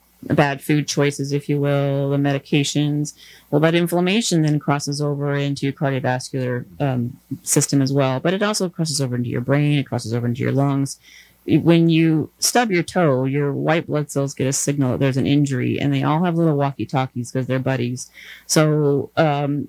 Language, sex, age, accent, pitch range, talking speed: English, female, 30-49, American, 130-150 Hz, 190 wpm